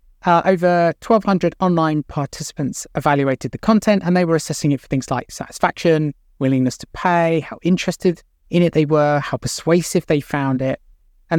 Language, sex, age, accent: English, male, 30-49, British